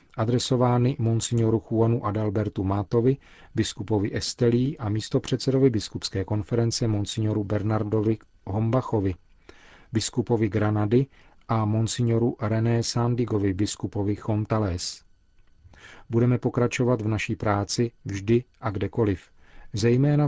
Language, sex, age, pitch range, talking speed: Czech, male, 40-59, 100-120 Hz, 90 wpm